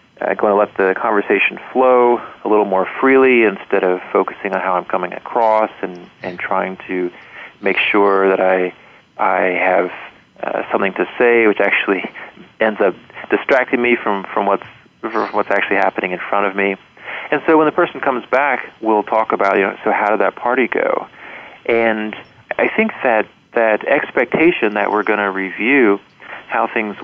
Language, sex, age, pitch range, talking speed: English, male, 30-49, 95-120 Hz, 180 wpm